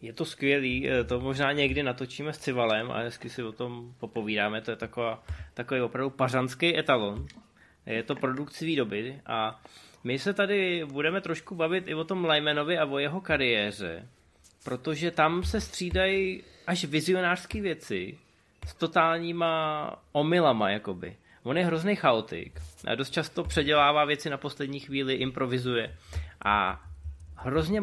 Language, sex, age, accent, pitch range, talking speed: Czech, male, 20-39, native, 120-155 Hz, 140 wpm